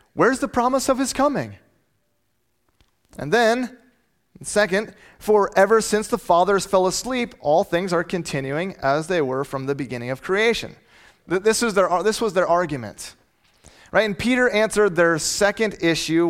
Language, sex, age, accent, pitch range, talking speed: English, male, 30-49, American, 150-210 Hz, 155 wpm